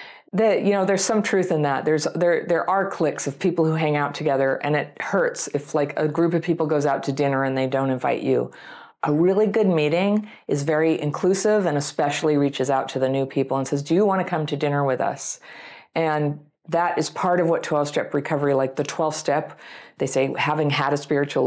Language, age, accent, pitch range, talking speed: English, 50-69, American, 135-175 Hz, 225 wpm